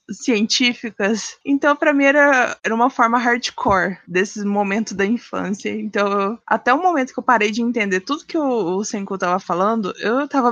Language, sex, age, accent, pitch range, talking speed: Portuguese, female, 20-39, Brazilian, 195-255 Hz, 185 wpm